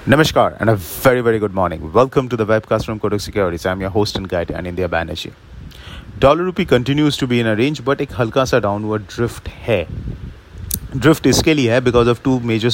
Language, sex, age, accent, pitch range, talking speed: English, male, 30-49, Indian, 100-125 Hz, 200 wpm